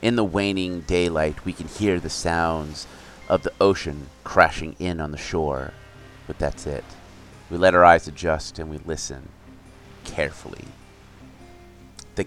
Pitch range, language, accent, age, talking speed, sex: 80-100 Hz, English, American, 30-49, 145 wpm, male